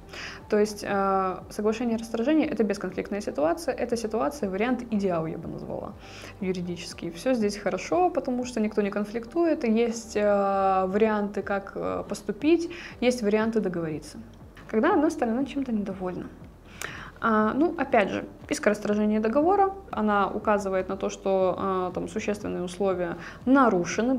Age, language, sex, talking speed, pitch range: 20-39, Russian, female, 135 wpm, 190-235 Hz